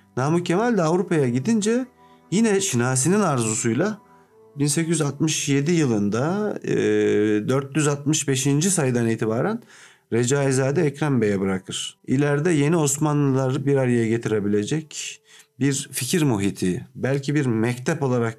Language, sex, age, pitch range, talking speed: Turkish, male, 40-59, 120-155 Hz, 100 wpm